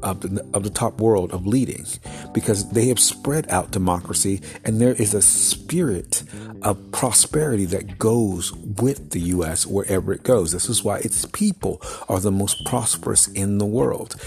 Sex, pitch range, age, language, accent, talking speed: male, 95-120 Hz, 50-69, English, American, 170 wpm